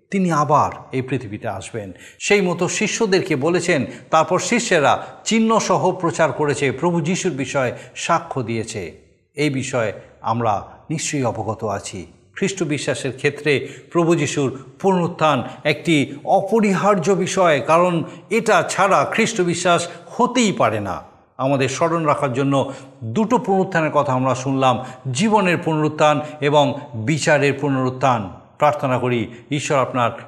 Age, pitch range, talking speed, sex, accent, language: 50-69, 125-165 Hz, 115 wpm, male, native, Bengali